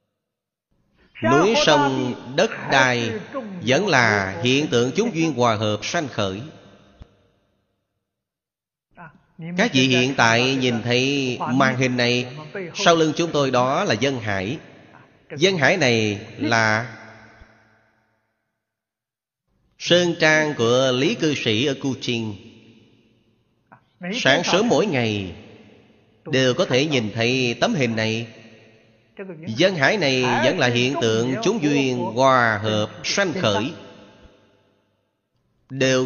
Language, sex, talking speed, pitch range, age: Vietnamese, male, 115 wpm, 110-140 Hz, 30-49